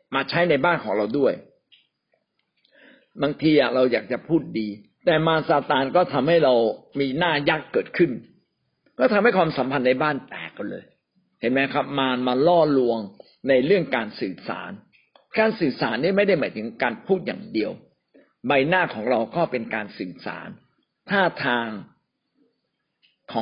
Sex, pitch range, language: male, 120-160 Hz, Thai